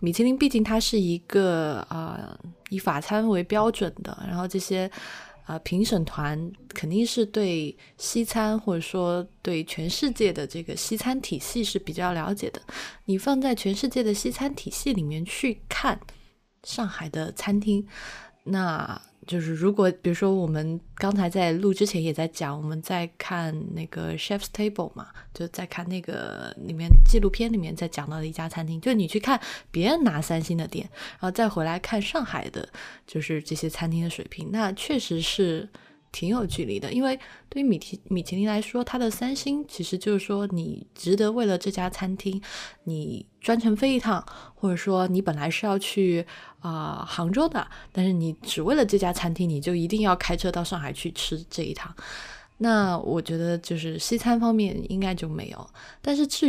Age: 20-39